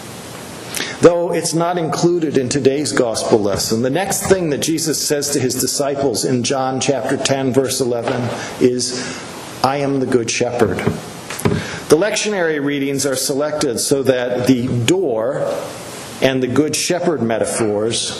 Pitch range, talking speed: 125-150 Hz, 140 wpm